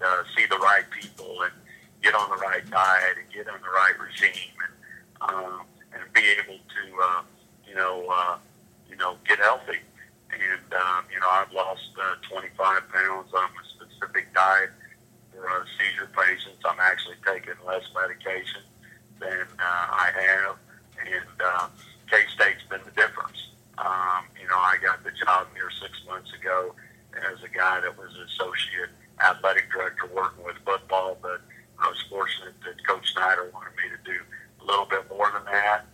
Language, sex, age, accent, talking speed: English, male, 50-69, American, 175 wpm